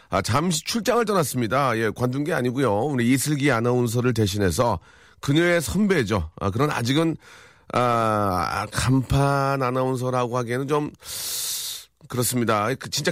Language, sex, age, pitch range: Korean, male, 40-59, 110-160 Hz